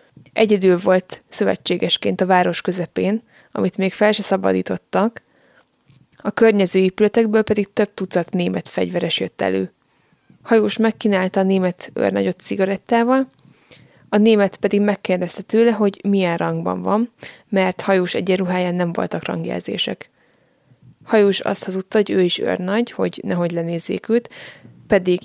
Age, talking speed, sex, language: 20-39, 130 wpm, female, Hungarian